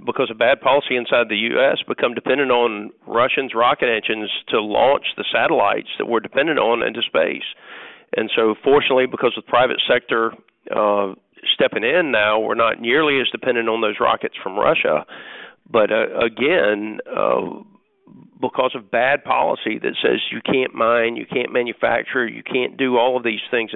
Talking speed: 170 wpm